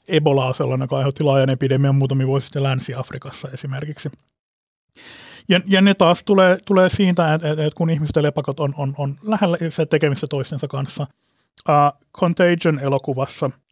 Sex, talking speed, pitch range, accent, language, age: male, 150 wpm, 135-160 Hz, native, Finnish, 30-49